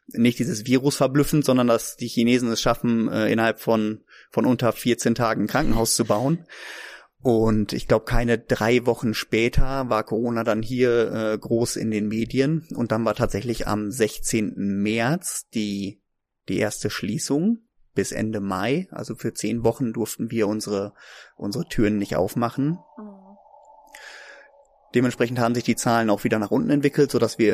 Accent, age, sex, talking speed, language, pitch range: German, 30-49, male, 155 wpm, German, 110-130 Hz